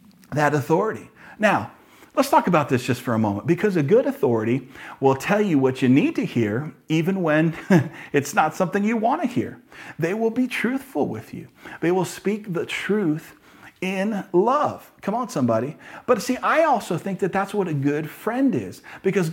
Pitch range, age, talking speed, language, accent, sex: 135-190 Hz, 40-59, 190 wpm, English, American, male